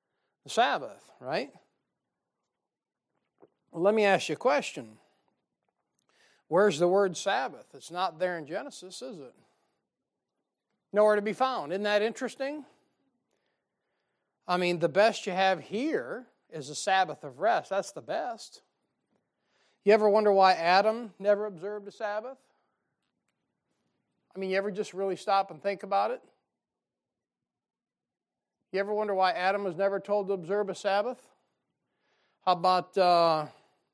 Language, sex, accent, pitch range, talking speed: English, male, American, 175-210 Hz, 135 wpm